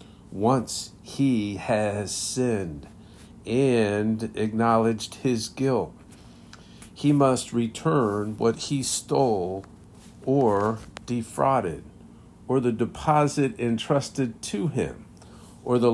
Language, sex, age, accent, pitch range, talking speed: English, male, 50-69, American, 110-135 Hz, 90 wpm